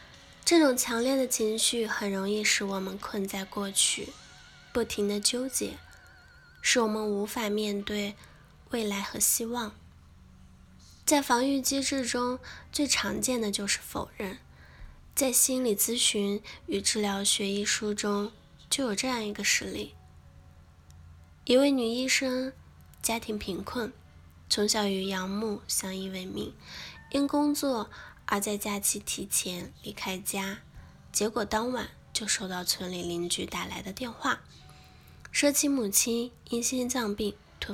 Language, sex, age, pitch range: Chinese, female, 10-29, 195-245 Hz